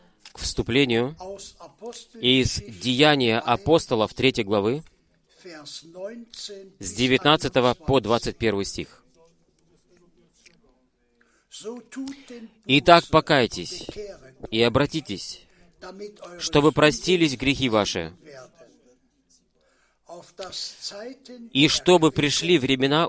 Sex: male